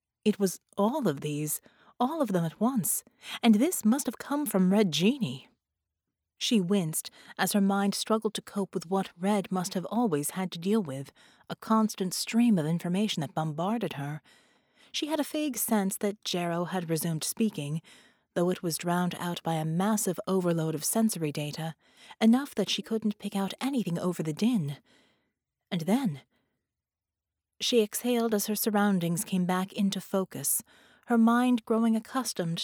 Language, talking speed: English, 165 wpm